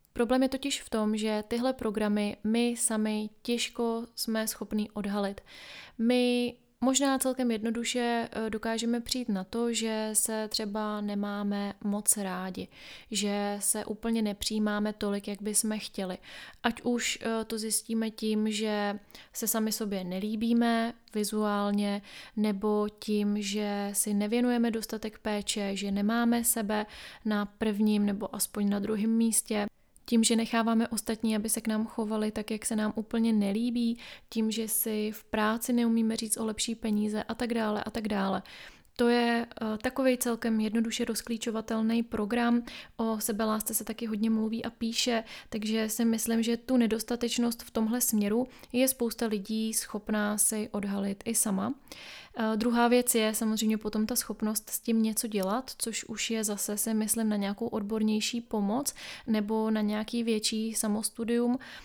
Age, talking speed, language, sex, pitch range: 20-39, 150 wpm, Czech, female, 215-230 Hz